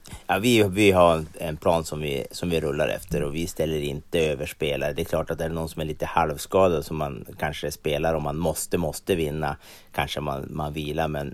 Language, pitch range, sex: Swedish, 75-85 Hz, male